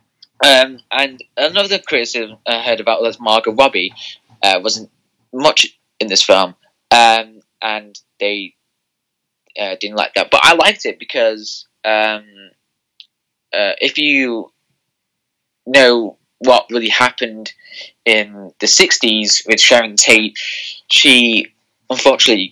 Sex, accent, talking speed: male, British, 115 wpm